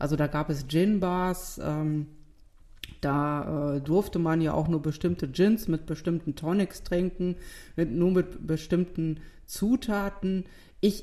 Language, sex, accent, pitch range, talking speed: German, female, German, 150-180 Hz, 135 wpm